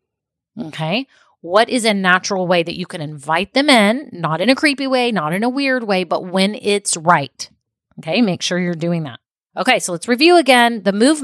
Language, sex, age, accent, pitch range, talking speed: English, female, 30-49, American, 175-235 Hz, 210 wpm